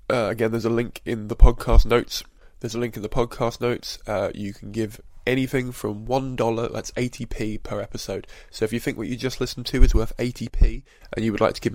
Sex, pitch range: male, 105-120 Hz